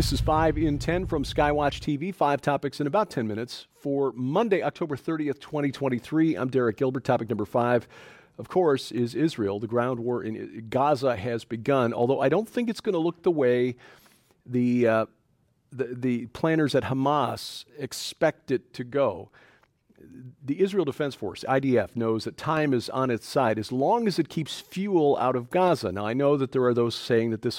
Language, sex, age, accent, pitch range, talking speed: English, male, 40-59, American, 115-145 Hz, 190 wpm